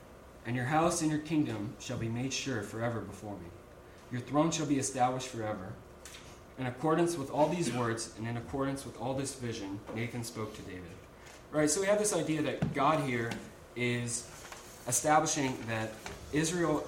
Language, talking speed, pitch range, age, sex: English, 180 wpm, 110-140 Hz, 20-39, male